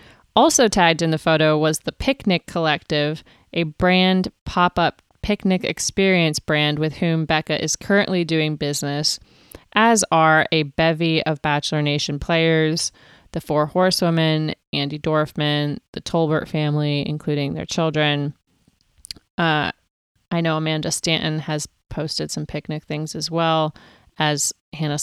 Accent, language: American, English